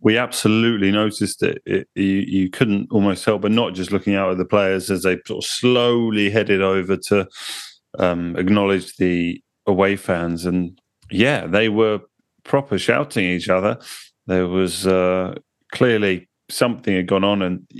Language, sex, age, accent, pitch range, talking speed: English, male, 30-49, British, 90-105 Hz, 165 wpm